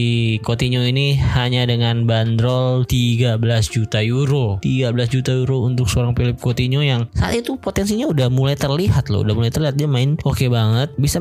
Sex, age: male, 20-39